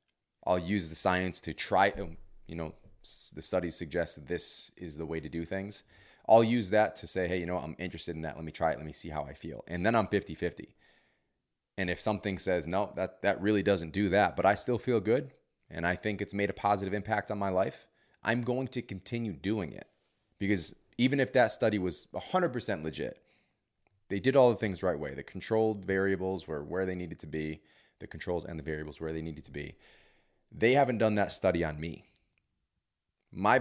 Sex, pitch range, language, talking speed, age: male, 80-105 Hz, English, 215 wpm, 30-49